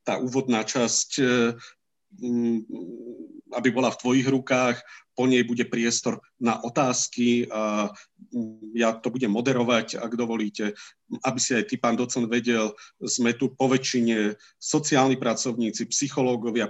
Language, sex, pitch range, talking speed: Slovak, male, 110-125 Hz, 120 wpm